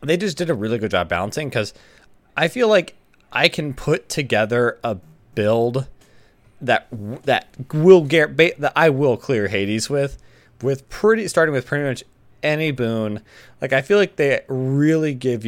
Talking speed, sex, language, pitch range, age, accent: 165 wpm, male, English, 105-145 Hz, 30-49, American